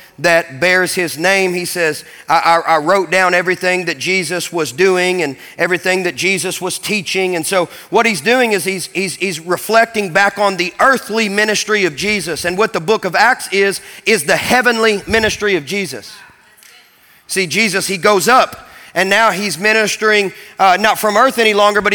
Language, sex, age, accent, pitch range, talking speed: English, male, 40-59, American, 185-225 Hz, 185 wpm